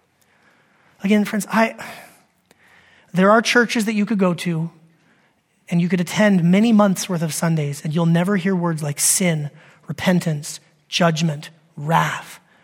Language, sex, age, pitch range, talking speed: English, male, 30-49, 165-200 Hz, 145 wpm